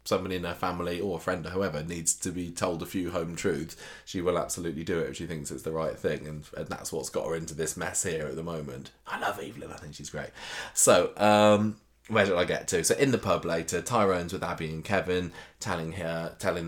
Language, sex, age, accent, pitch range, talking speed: English, male, 20-39, British, 80-105 Hz, 250 wpm